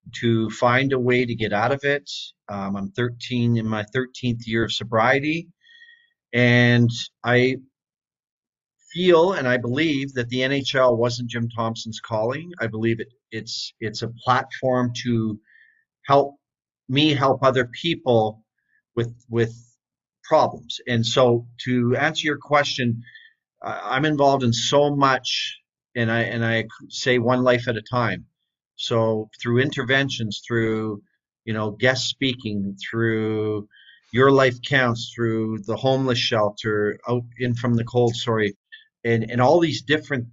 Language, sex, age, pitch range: English, male, 40-59, 115-135 Hz